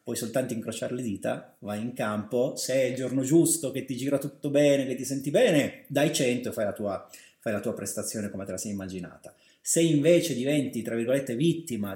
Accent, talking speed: native, 200 wpm